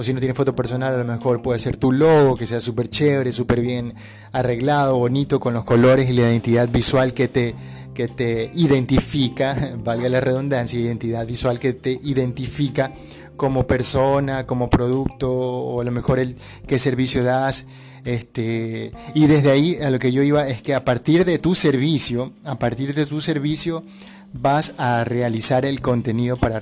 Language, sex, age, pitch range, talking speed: Spanish, male, 30-49, 120-145 Hz, 180 wpm